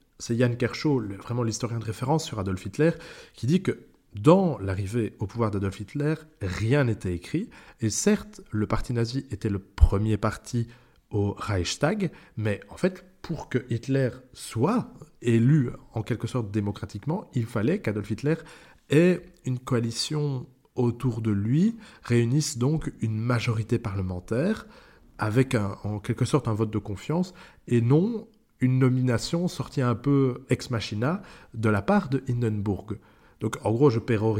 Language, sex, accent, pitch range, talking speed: French, male, French, 110-140 Hz, 155 wpm